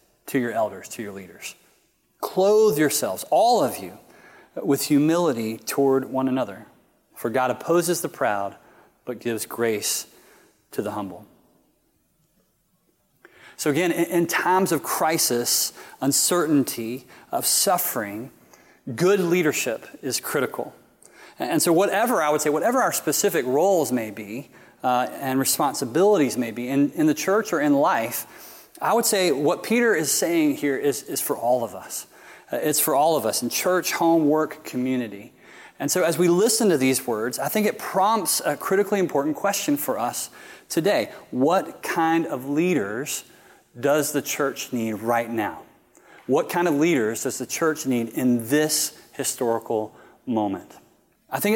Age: 30-49